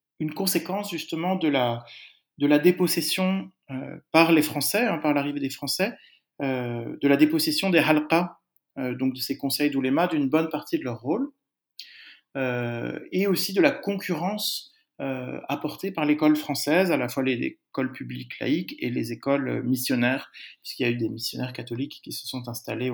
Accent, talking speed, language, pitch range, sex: French, 180 wpm, French, 125-175 Hz, male